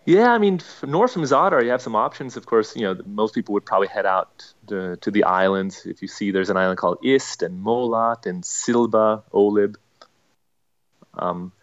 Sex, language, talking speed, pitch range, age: male, English, 195 wpm, 95-125 Hz, 30-49